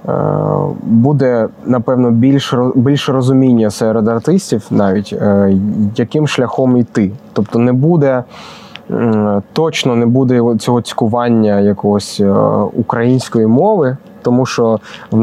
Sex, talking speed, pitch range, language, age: male, 95 wpm, 105-125 Hz, Ukrainian, 20-39